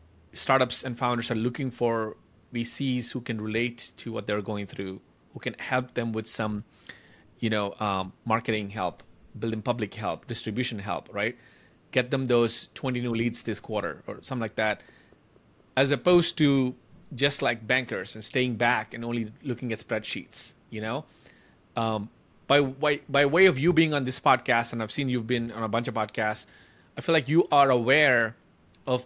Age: 30-49